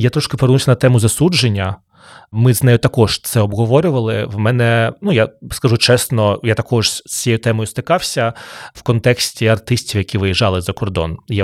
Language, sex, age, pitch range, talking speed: Ukrainian, male, 20-39, 105-130 Hz, 170 wpm